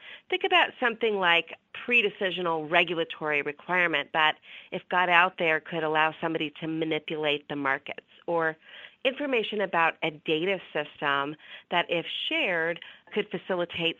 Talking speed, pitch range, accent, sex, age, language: 130 wpm, 160-205 Hz, American, female, 40-59, English